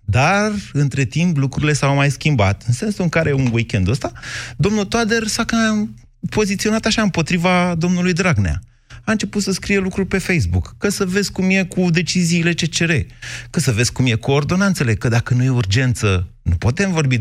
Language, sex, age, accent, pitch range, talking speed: Romanian, male, 30-49, native, 115-175 Hz, 190 wpm